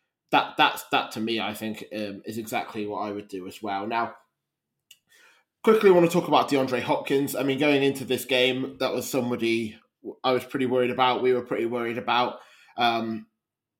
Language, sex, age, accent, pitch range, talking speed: English, male, 20-39, British, 120-150 Hz, 195 wpm